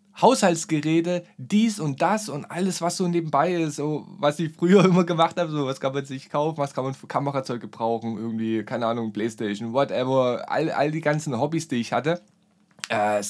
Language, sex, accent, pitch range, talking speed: German, male, German, 110-165 Hz, 195 wpm